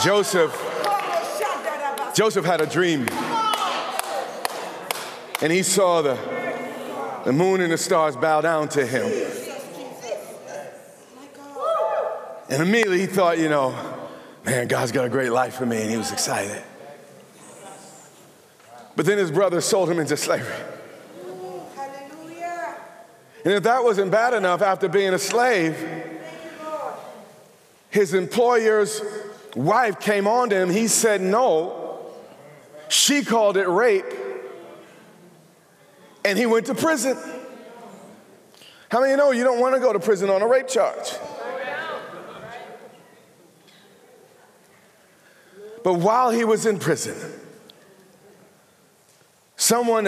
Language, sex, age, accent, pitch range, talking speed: English, male, 40-59, American, 180-255 Hz, 115 wpm